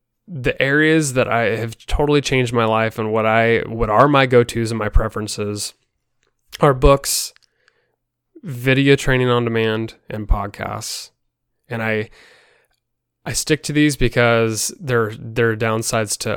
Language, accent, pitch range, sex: English, American, 110-125 Hz, male